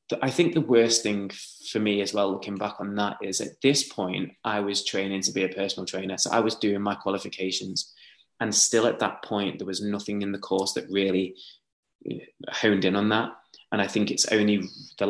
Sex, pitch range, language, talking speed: male, 100-120 Hz, English, 215 wpm